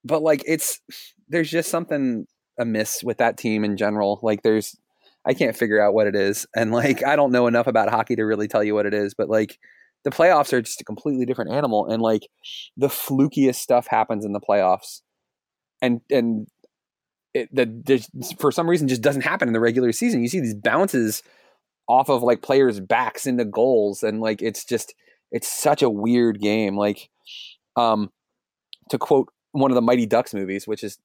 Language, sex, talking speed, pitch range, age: English, male, 195 wpm, 110-150 Hz, 20-39